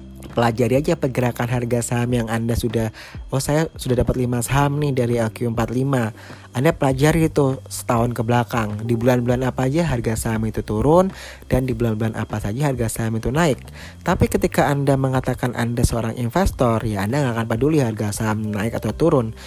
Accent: native